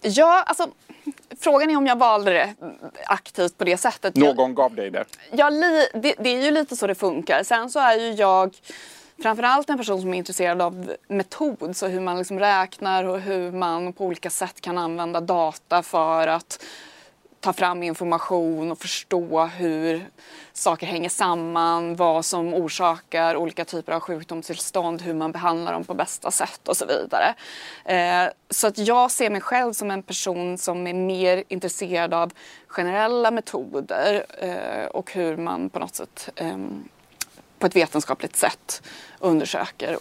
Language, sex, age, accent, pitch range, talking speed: Swedish, female, 20-39, native, 170-210 Hz, 155 wpm